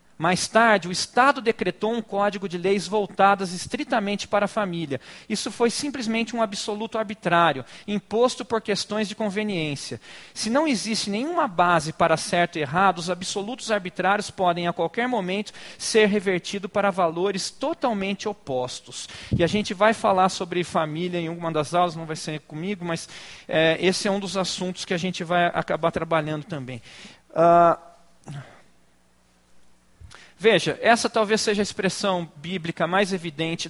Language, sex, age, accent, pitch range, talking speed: Portuguese, male, 40-59, Brazilian, 160-210 Hz, 150 wpm